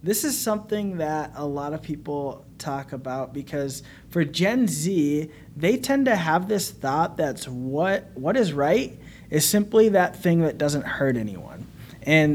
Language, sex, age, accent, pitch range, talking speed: English, male, 20-39, American, 135-175 Hz, 165 wpm